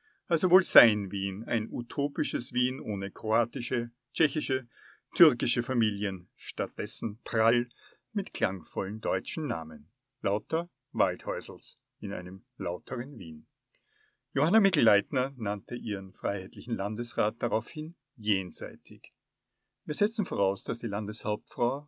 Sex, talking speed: male, 105 wpm